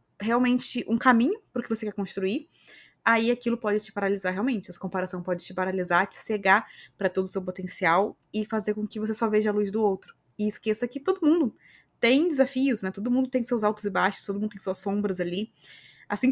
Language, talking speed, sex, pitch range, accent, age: Portuguese, 220 wpm, female, 190-240 Hz, Brazilian, 20-39